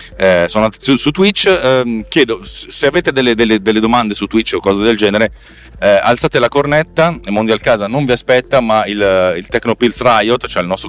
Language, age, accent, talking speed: Italian, 30-49, native, 195 wpm